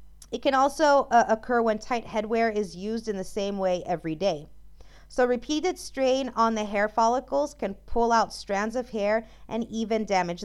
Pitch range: 195-250 Hz